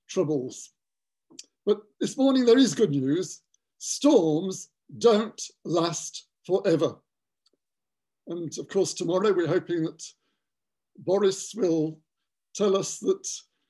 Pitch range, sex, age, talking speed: 170-220 Hz, male, 60-79, 105 wpm